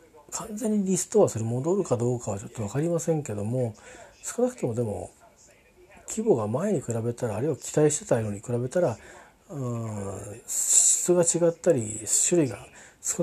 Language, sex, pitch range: Japanese, male, 110-140 Hz